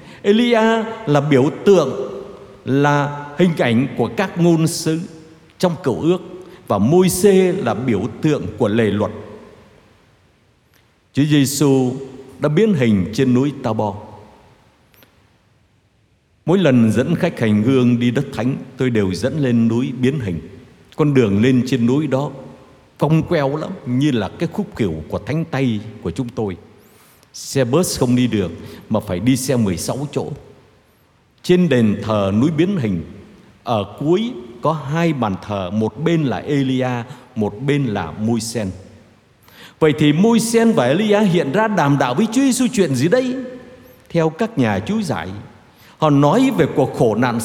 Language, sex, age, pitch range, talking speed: Vietnamese, male, 60-79, 110-165 Hz, 160 wpm